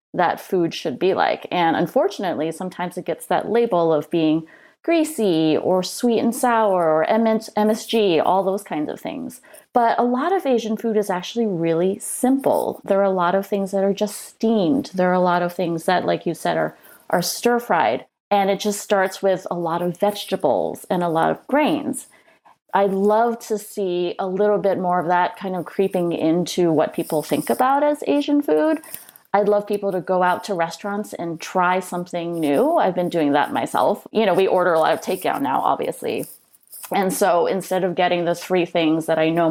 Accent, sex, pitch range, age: American, female, 175-220 Hz, 30-49